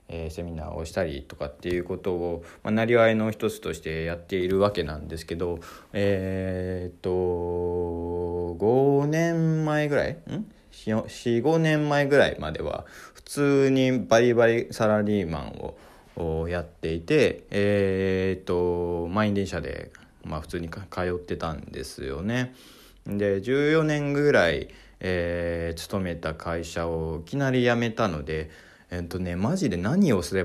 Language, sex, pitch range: Japanese, male, 85-120 Hz